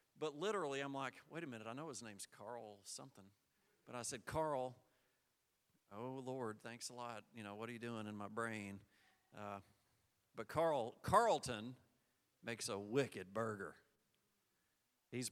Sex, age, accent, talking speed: male, 40-59, American, 155 wpm